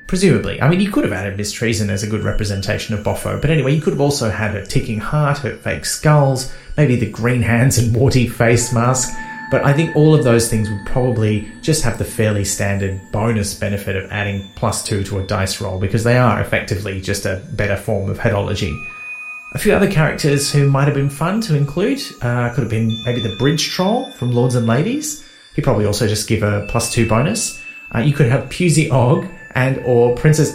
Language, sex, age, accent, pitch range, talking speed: English, male, 30-49, Australian, 110-145 Hz, 215 wpm